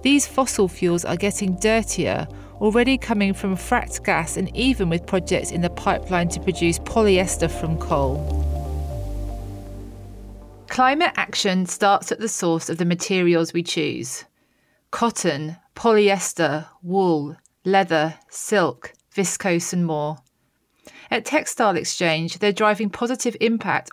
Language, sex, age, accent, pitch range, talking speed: English, female, 30-49, British, 170-225 Hz, 125 wpm